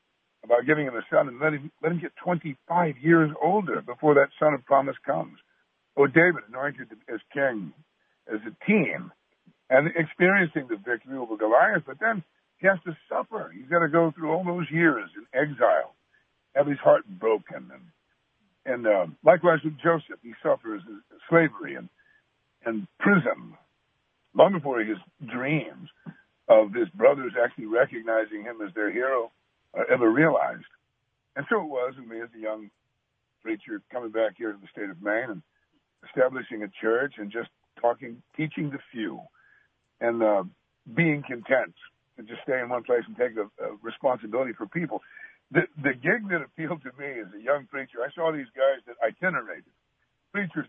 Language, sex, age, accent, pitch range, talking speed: English, male, 60-79, American, 130-175 Hz, 175 wpm